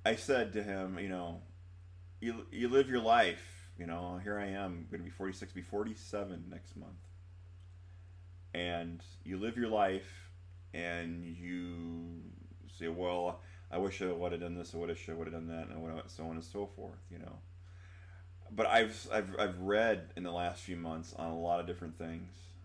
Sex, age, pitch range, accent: male, 30-49, 85-95 Hz, American